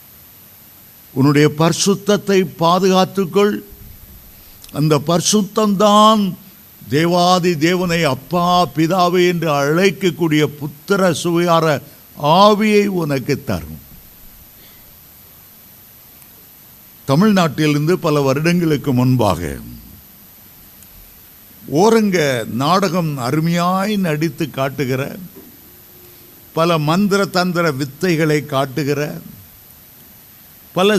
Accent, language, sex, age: native, Tamil, male, 50-69